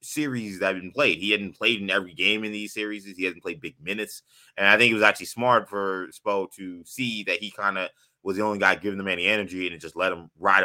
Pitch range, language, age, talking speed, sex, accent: 95-130 Hz, English, 20-39, 275 wpm, male, American